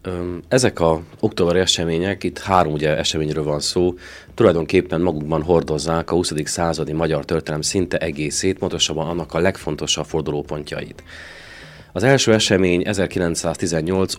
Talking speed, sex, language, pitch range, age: 125 wpm, male, Hungarian, 80-95 Hz, 30-49